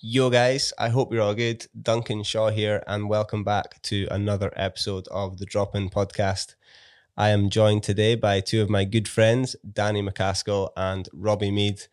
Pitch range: 100-110 Hz